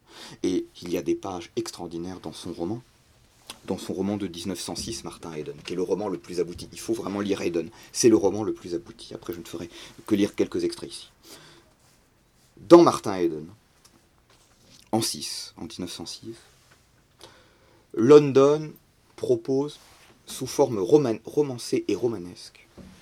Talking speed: 150 wpm